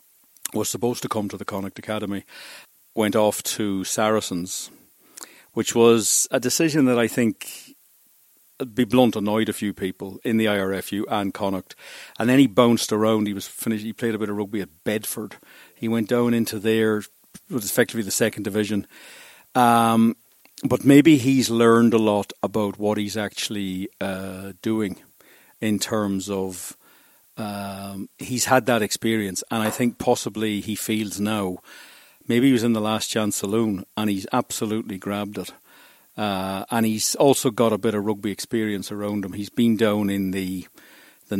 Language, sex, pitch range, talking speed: English, male, 100-115 Hz, 165 wpm